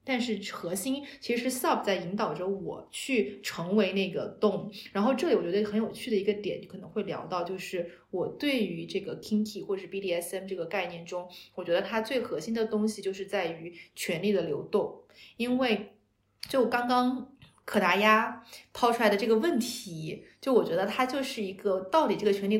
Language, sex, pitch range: Chinese, female, 190-235 Hz